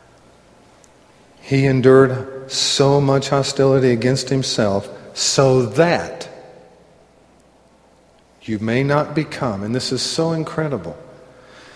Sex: male